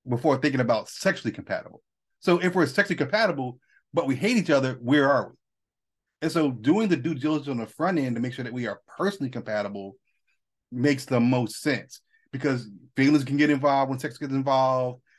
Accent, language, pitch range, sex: American, English, 115-150 Hz, male